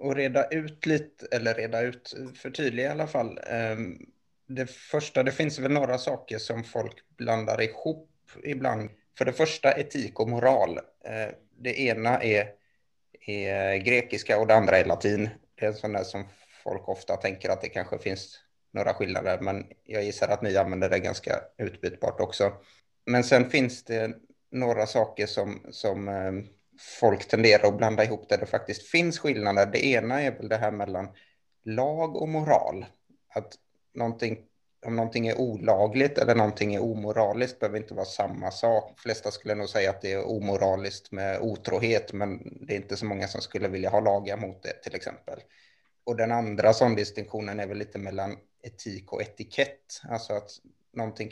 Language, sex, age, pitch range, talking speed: Swedish, male, 30-49, 100-125 Hz, 175 wpm